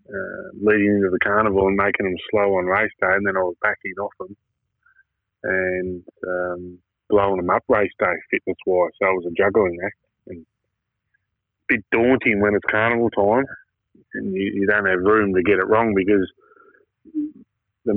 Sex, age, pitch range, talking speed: male, 30-49, 95-115 Hz, 175 wpm